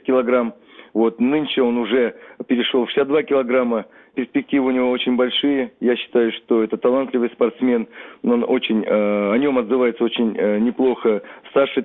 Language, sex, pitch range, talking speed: Russian, male, 110-125 Hz, 150 wpm